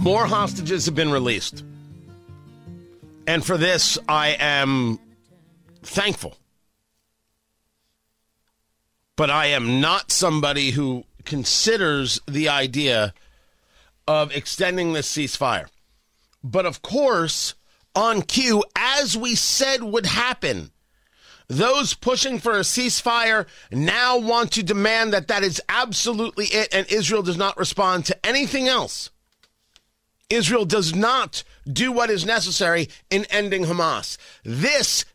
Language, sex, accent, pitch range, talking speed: English, male, American, 145-215 Hz, 115 wpm